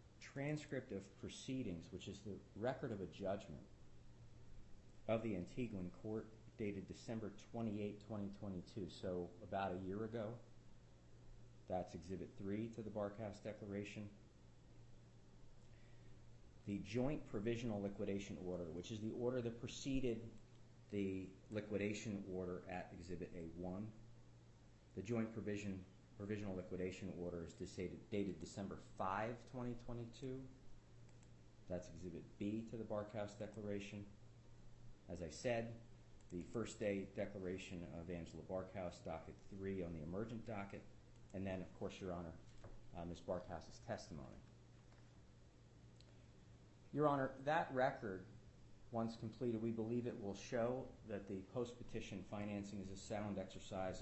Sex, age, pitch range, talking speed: male, 40-59, 95-115 Hz, 120 wpm